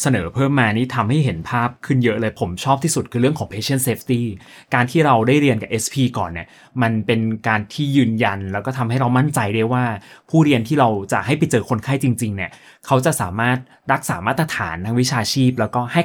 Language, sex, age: Thai, male, 20-39